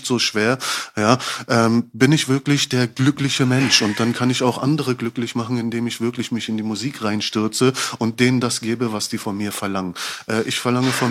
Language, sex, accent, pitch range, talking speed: German, male, German, 110-135 Hz, 210 wpm